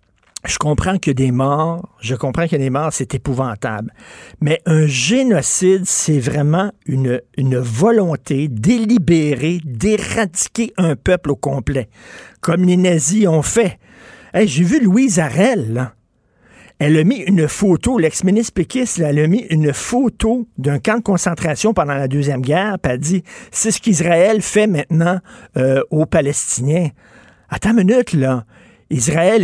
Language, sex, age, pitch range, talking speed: French, male, 50-69, 135-195 Hz, 155 wpm